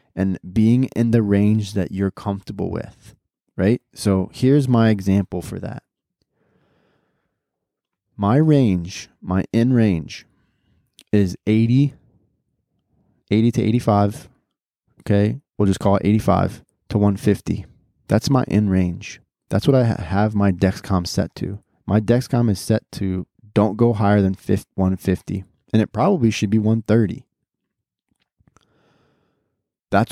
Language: English